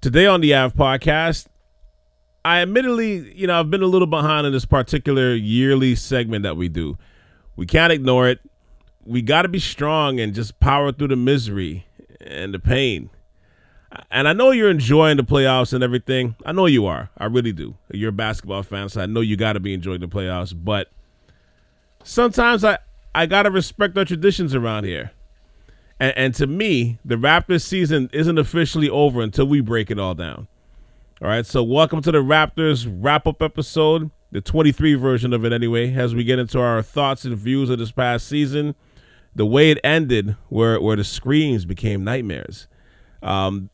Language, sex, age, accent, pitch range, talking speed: English, male, 30-49, American, 110-155 Hz, 180 wpm